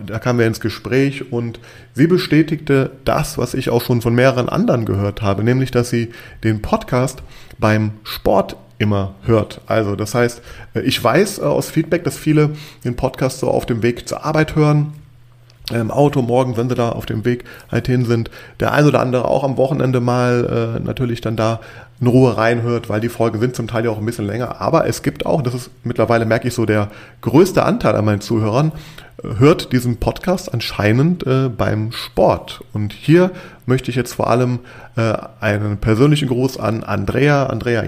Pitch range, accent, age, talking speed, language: 110-130 Hz, German, 30-49, 190 wpm, German